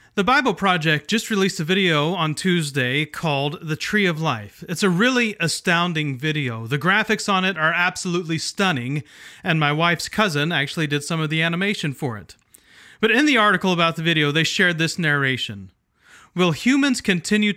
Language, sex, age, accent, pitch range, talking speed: English, male, 30-49, American, 145-190 Hz, 180 wpm